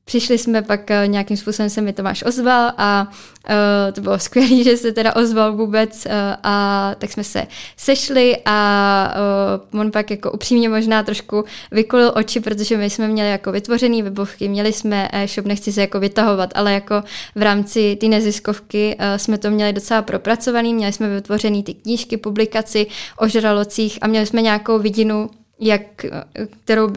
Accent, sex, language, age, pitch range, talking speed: native, female, Czech, 20-39, 200-220 Hz, 165 wpm